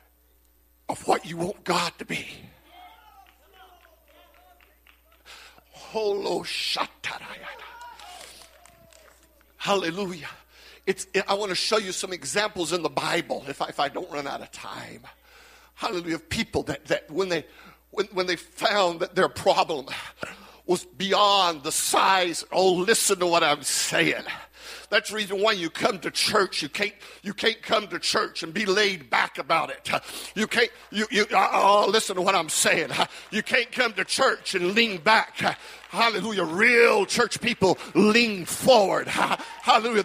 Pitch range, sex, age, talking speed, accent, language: 185-255 Hz, male, 50-69, 145 wpm, American, English